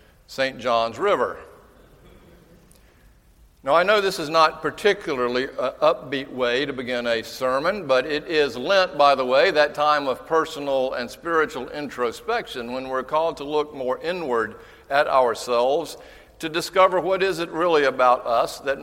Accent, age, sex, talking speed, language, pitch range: American, 60-79, male, 155 wpm, English, 115-155 Hz